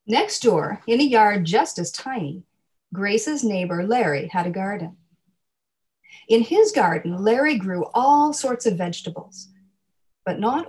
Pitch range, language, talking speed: 180-230 Hz, English, 140 wpm